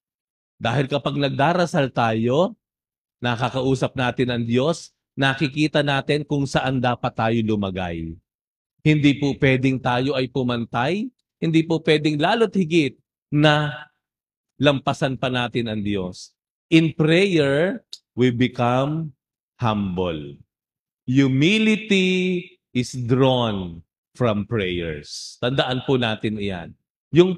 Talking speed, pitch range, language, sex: 105 wpm, 120-160 Hz, Filipino, male